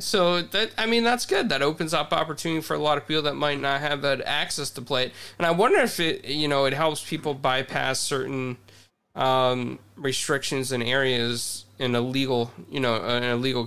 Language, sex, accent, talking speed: English, male, American, 210 wpm